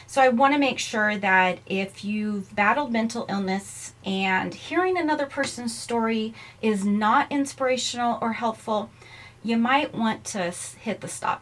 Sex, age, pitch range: female, 30-49, 185-245 Hz